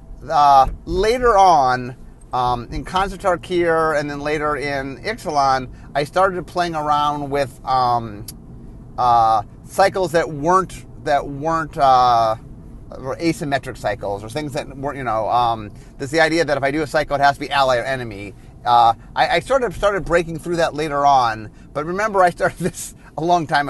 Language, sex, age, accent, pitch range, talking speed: English, male, 30-49, American, 125-165 Hz, 175 wpm